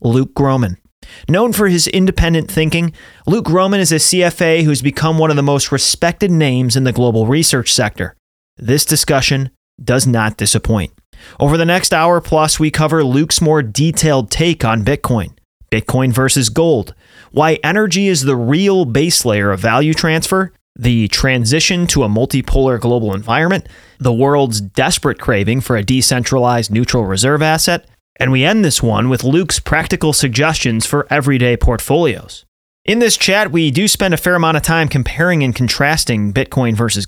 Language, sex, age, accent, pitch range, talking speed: English, male, 30-49, American, 120-160 Hz, 165 wpm